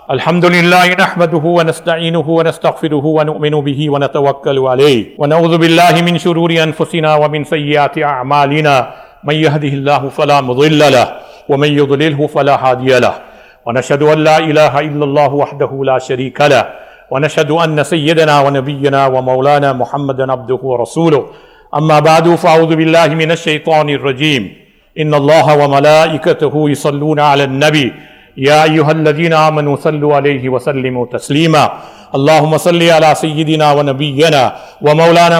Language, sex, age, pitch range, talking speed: English, male, 60-79, 140-160 Hz, 125 wpm